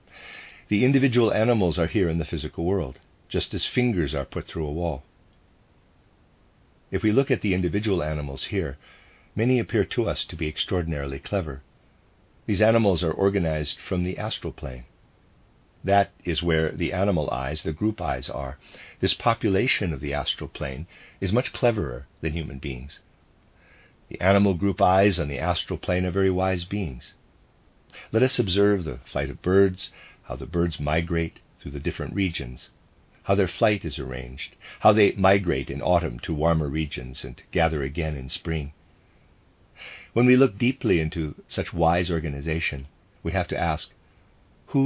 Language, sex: English, male